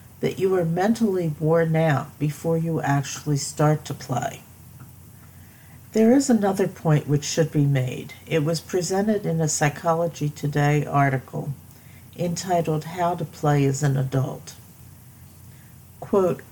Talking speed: 130 wpm